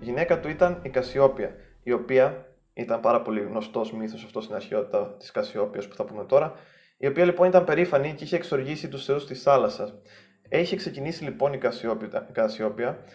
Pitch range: 120-150 Hz